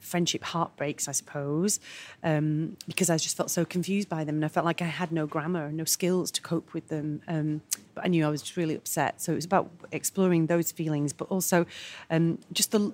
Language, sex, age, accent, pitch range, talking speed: English, female, 30-49, British, 155-190 Hz, 225 wpm